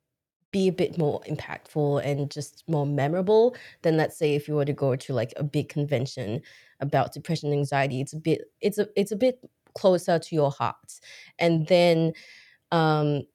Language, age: English, 20-39